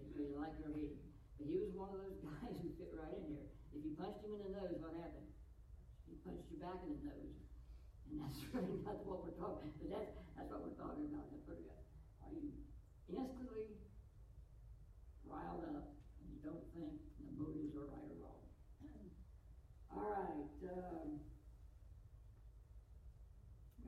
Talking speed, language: 160 wpm, English